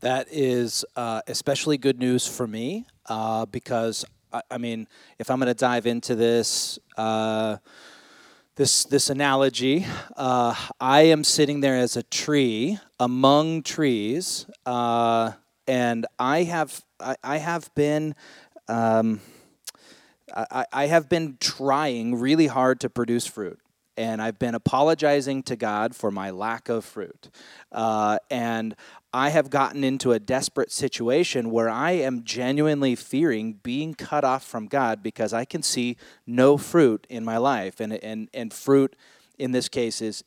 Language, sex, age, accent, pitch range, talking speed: English, male, 30-49, American, 115-145 Hz, 150 wpm